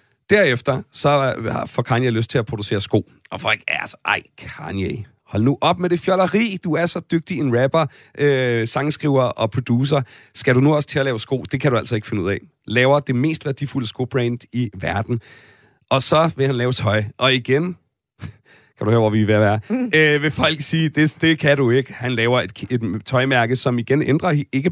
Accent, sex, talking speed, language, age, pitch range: native, male, 210 wpm, Danish, 30-49, 120-150 Hz